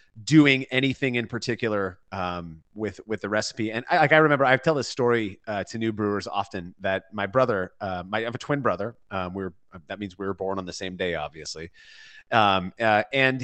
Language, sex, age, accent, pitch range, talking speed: English, male, 30-49, American, 100-125 Hz, 215 wpm